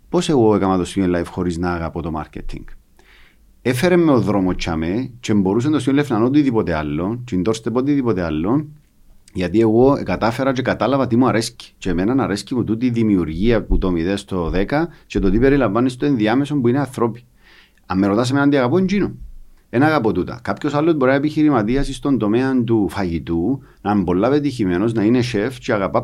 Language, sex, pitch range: Greek, male, 100-140 Hz